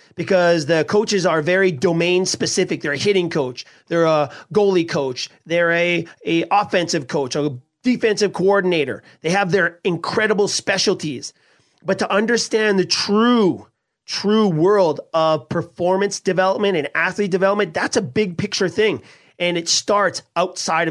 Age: 30-49